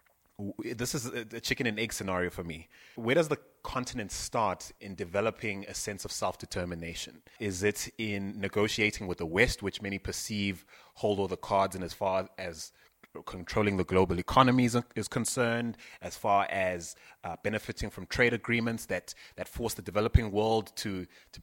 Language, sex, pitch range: English, male, 95-115 Hz